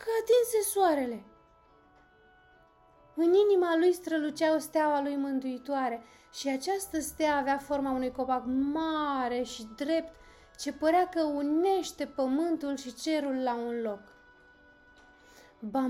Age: 20-39